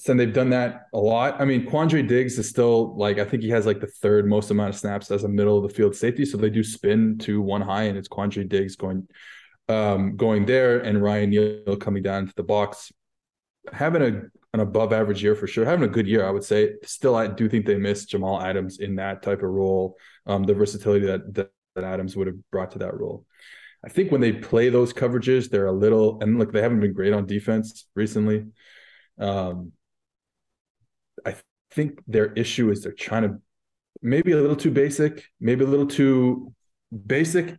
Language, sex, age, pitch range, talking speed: English, male, 20-39, 105-125 Hz, 210 wpm